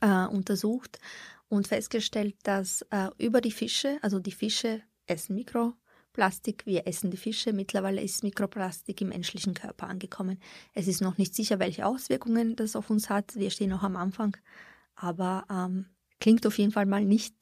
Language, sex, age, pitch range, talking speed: German, female, 20-39, 190-215 Hz, 165 wpm